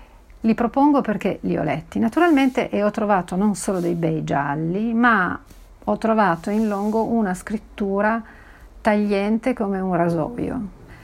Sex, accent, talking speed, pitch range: female, native, 140 wpm, 180-225 Hz